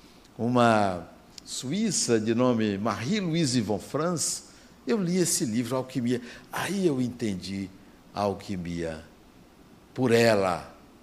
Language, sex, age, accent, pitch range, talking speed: Portuguese, male, 60-79, Brazilian, 110-165 Hz, 105 wpm